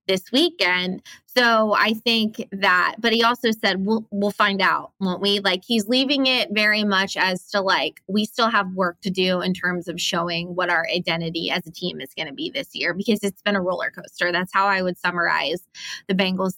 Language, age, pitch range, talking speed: English, 20-39, 180-215 Hz, 215 wpm